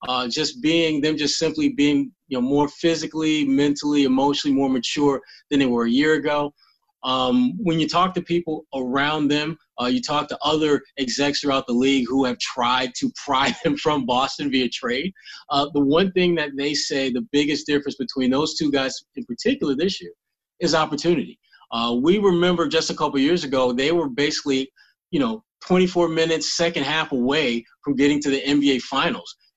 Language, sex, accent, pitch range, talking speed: English, male, American, 135-170 Hz, 185 wpm